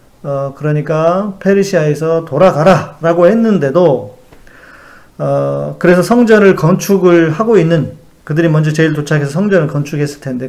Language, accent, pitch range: Korean, native, 140-185 Hz